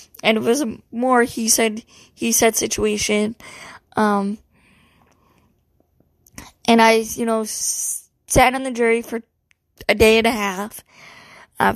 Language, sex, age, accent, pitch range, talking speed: English, female, 20-39, American, 215-240 Hz, 130 wpm